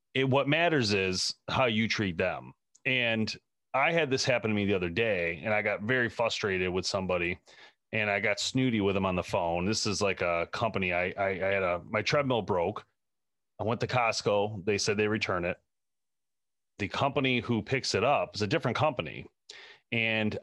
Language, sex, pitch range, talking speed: English, male, 100-125 Hz, 195 wpm